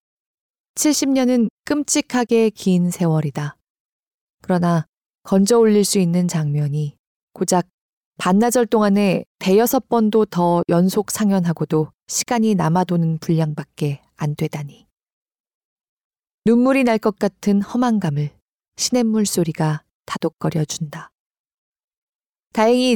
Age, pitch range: 20-39, 160-220 Hz